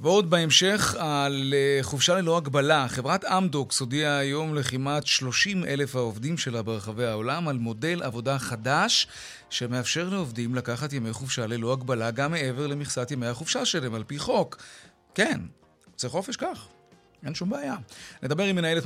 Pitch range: 120-160 Hz